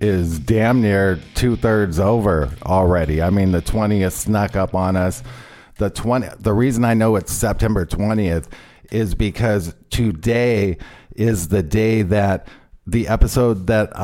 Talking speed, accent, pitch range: 145 wpm, American, 95-110 Hz